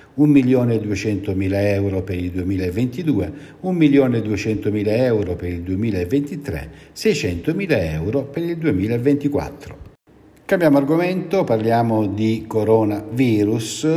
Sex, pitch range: male, 95-125 Hz